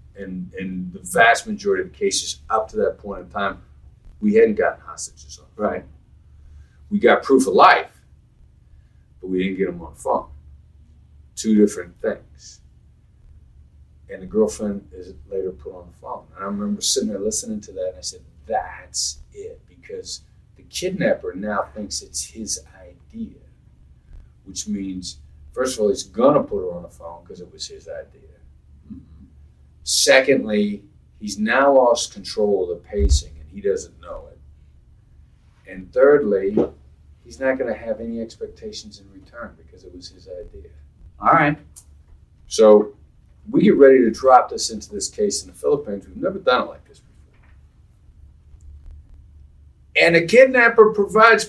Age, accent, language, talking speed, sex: 40-59, American, English, 160 wpm, male